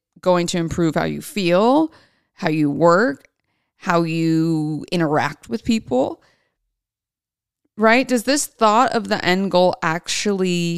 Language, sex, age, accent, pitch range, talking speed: English, female, 30-49, American, 170-230 Hz, 130 wpm